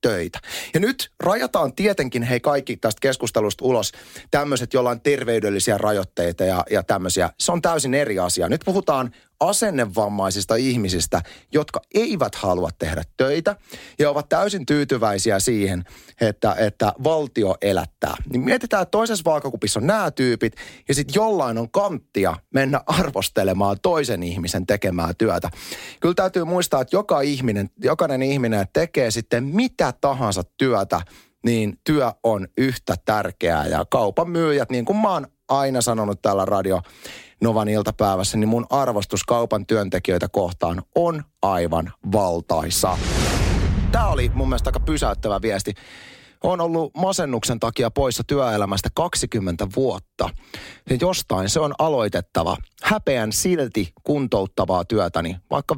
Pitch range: 95-140 Hz